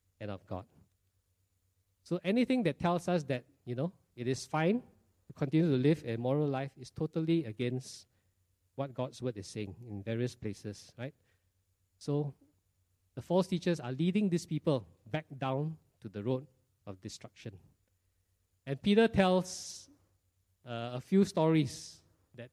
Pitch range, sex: 95-155 Hz, male